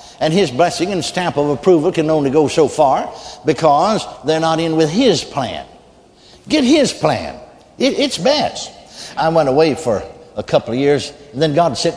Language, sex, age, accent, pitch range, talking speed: English, male, 60-79, American, 140-175 Hz, 185 wpm